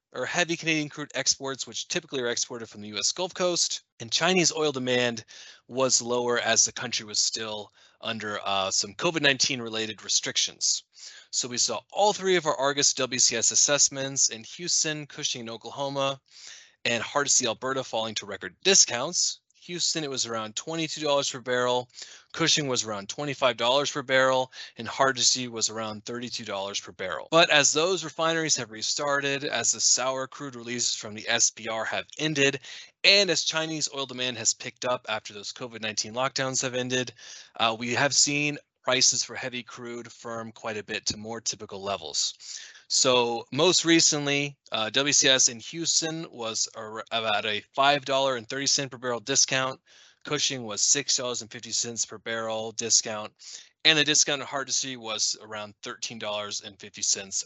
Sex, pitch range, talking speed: male, 115-145 Hz, 165 wpm